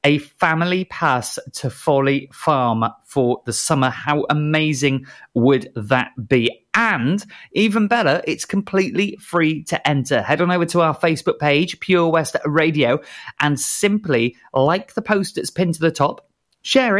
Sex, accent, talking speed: male, British, 150 wpm